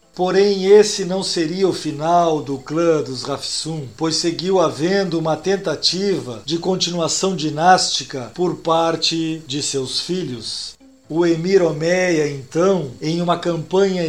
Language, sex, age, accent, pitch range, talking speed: Portuguese, male, 50-69, Brazilian, 145-180 Hz, 130 wpm